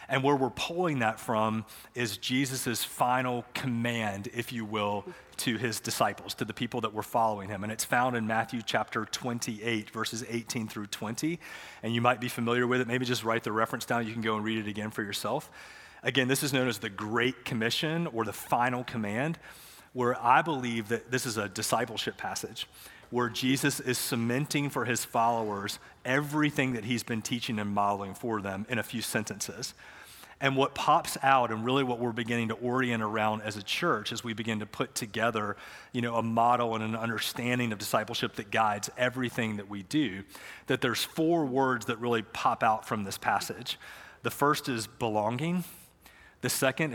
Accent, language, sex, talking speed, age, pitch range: American, English, male, 190 wpm, 30-49, 110-130 Hz